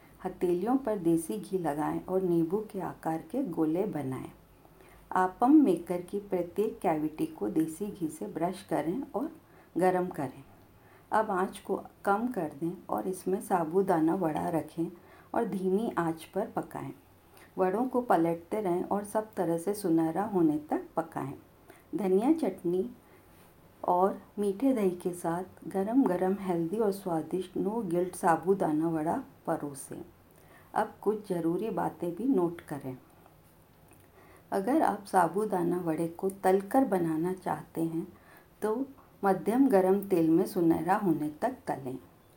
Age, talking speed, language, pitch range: 50-69, 135 wpm, Hindi, 165-205 Hz